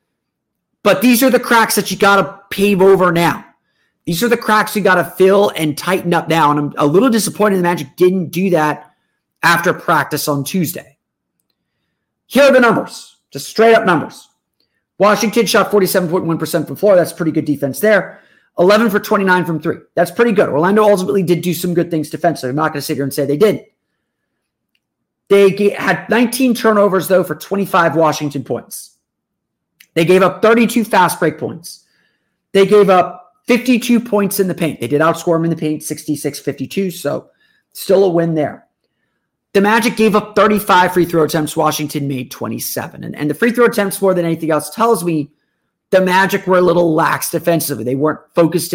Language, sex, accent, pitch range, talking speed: English, male, American, 155-205 Hz, 190 wpm